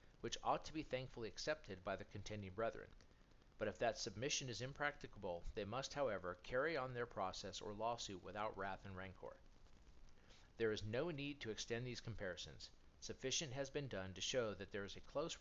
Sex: male